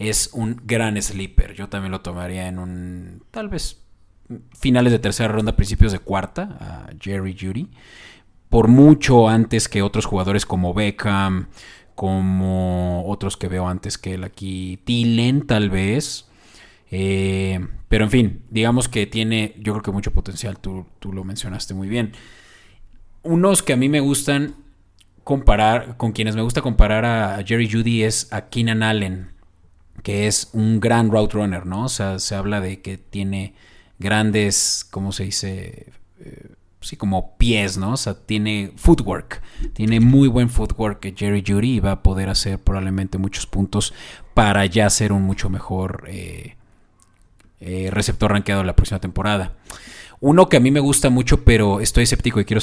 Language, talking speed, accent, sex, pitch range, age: Spanish, 165 wpm, Mexican, male, 95-115 Hz, 30-49